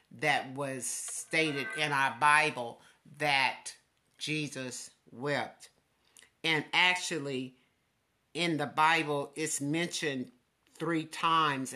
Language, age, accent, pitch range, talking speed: English, 50-69, American, 135-160 Hz, 90 wpm